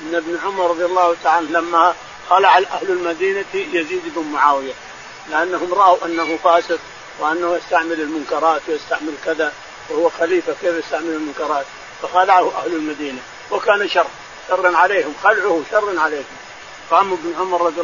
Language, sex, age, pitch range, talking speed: Arabic, male, 50-69, 165-210 Hz, 140 wpm